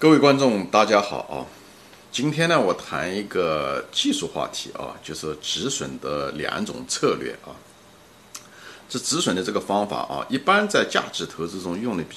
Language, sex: Chinese, male